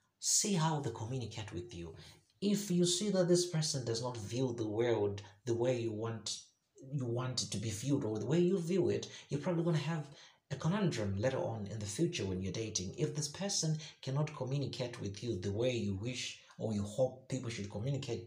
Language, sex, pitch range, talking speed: English, male, 110-160 Hz, 215 wpm